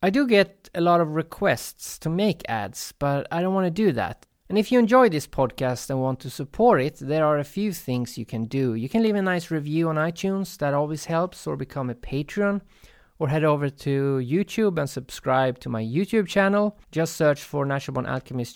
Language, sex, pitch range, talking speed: English, male, 130-180 Hz, 220 wpm